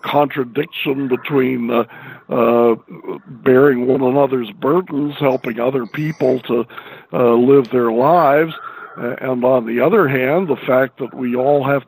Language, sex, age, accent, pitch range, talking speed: English, male, 60-79, American, 120-135 Hz, 135 wpm